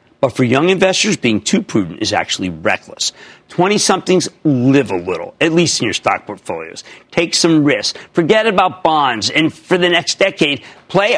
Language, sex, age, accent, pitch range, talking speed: English, male, 50-69, American, 140-210 Hz, 170 wpm